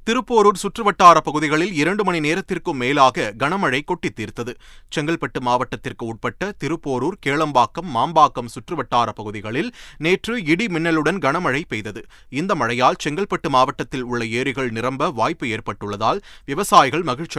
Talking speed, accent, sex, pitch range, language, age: 115 wpm, native, male, 130-180 Hz, Tamil, 30-49